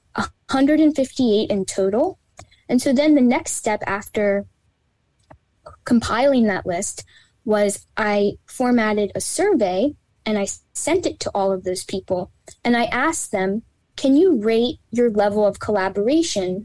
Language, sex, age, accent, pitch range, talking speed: English, female, 10-29, American, 195-240 Hz, 135 wpm